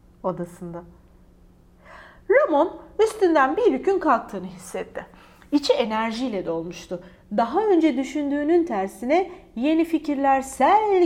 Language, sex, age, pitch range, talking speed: Turkish, female, 40-59, 220-330 Hz, 90 wpm